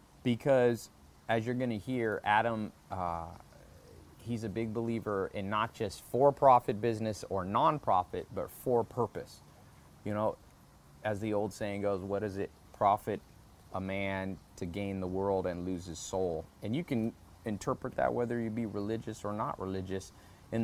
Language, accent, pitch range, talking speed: English, American, 95-115 Hz, 170 wpm